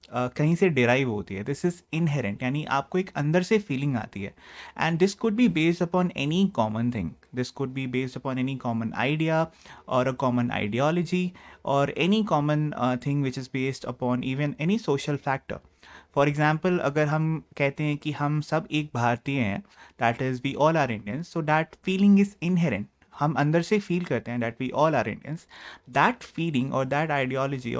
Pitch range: 125-165 Hz